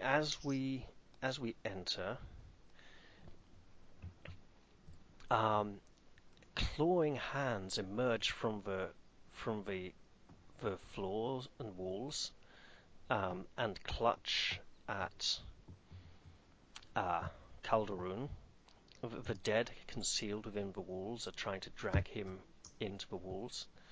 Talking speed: 95 wpm